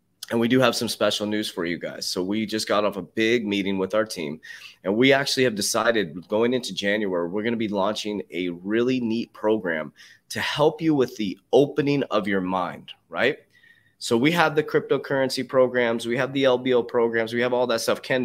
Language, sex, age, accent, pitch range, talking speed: English, male, 30-49, American, 100-125 Hz, 215 wpm